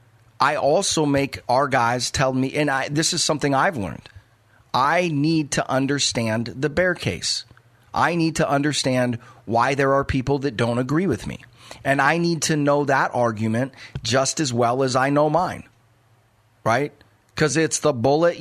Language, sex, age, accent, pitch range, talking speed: English, male, 40-59, American, 120-160 Hz, 175 wpm